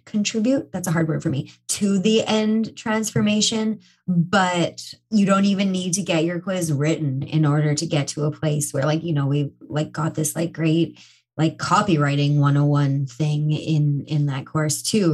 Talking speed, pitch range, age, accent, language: 185 wpm, 155-215 Hz, 20-39, American, English